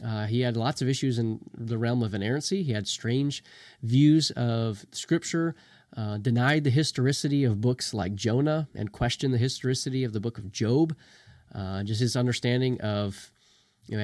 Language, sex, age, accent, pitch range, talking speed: English, male, 30-49, American, 115-150 Hz, 175 wpm